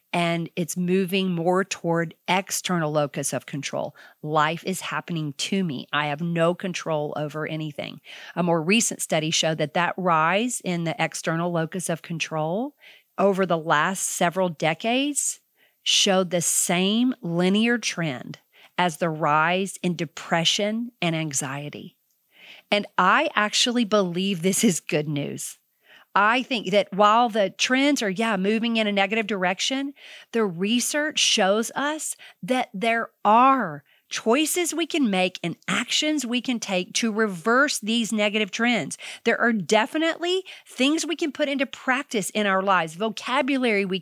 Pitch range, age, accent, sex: 175-245 Hz, 40-59, American, female